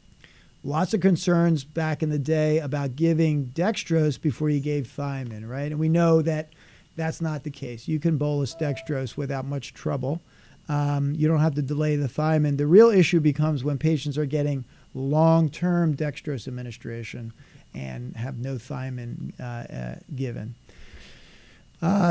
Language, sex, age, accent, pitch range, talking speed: English, male, 50-69, American, 140-165 Hz, 150 wpm